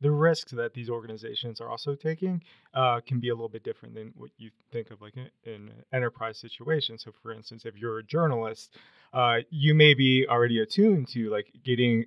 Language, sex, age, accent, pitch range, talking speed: English, male, 20-39, American, 115-130 Hz, 205 wpm